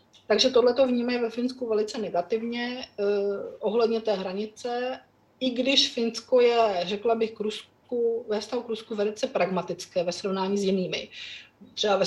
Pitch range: 190-220 Hz